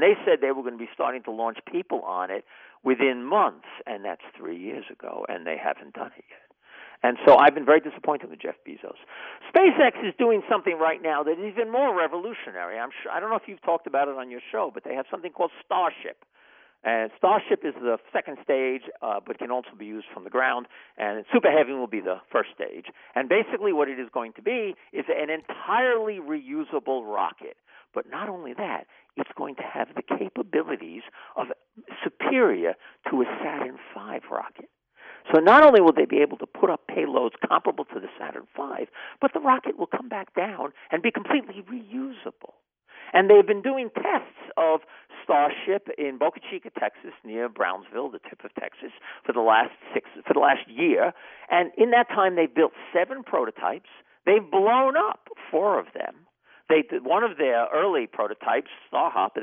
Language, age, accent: English, 50-69, American